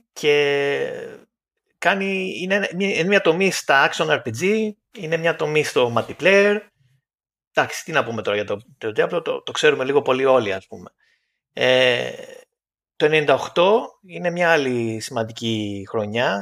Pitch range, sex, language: 125-200 Hz, male, Greek